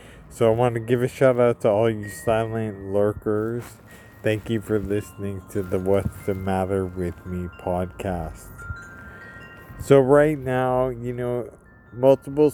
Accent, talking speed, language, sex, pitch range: American, 145 wpm, English, male, 100-120 Hz